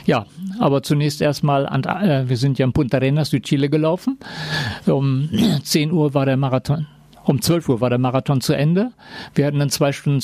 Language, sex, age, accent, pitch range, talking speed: German, male, 50-69, German, 140-160 Hz, 195 wpm